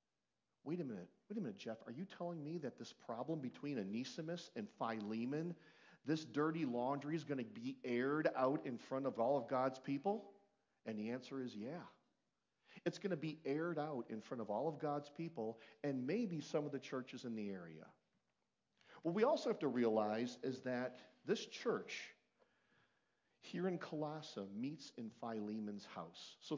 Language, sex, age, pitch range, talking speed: English, male, 40-59, 120-170 Hz, 180 wpm